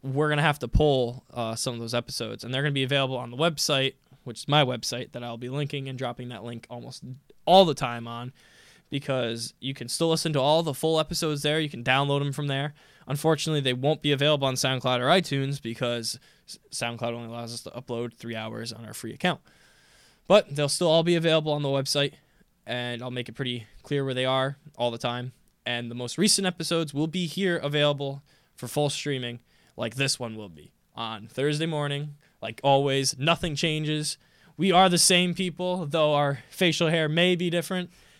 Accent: American